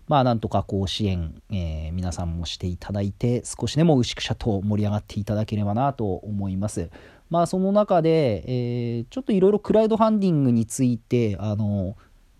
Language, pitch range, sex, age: Japanese, 95-130 Hz, male, 40-59